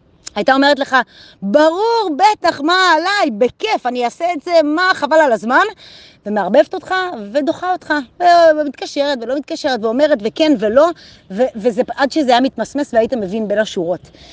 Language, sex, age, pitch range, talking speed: Hebrew, female, 30-49, 240-330 Hz, 145 wpm